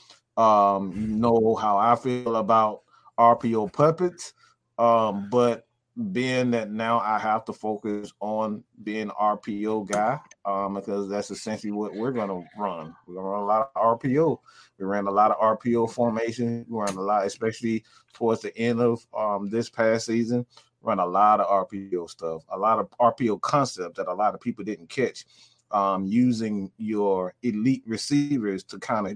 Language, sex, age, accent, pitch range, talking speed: English, male, 30-49, American, 105-120 Hz, 170 wpm